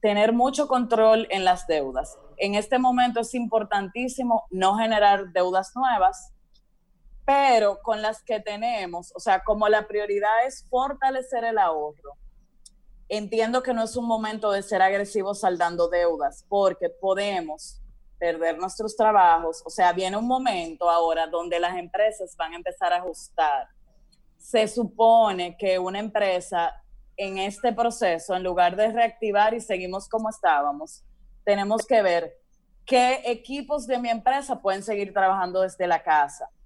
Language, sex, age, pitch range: Spanish, female, 20-39, 185-235 Hz